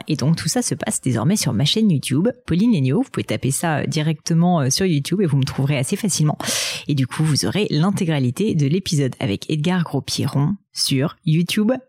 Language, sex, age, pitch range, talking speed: French, female, 30-49, 145-190 Hz, 195 wpm